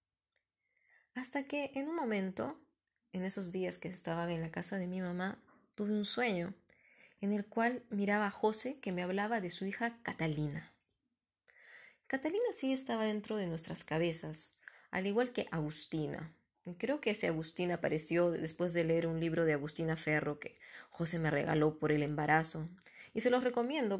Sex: female